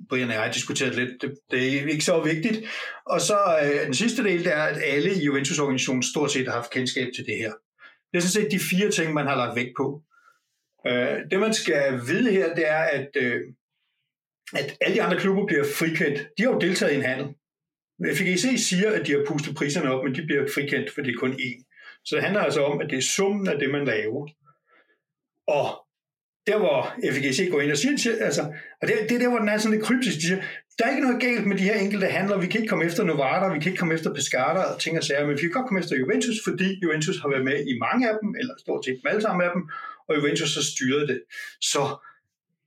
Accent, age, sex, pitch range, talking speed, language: native, 60-79, male, 145-210 Hz, 250 wpm, Danish